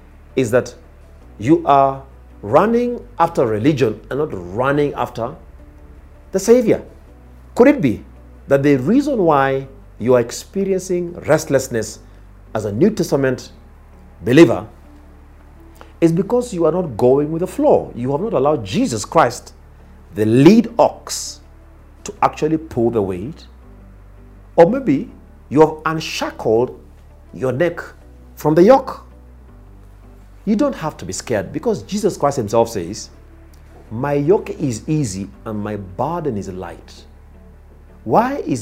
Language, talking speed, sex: English, 130 wpm, male